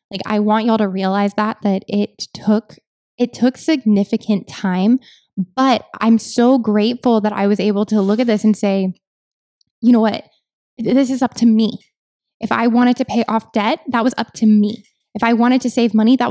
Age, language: 10-29, English